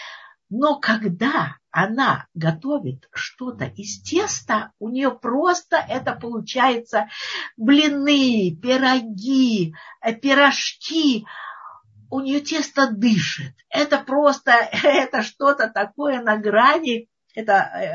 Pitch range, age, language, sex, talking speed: 215-310 Hz, 50-69, Russian, female, 90 wpm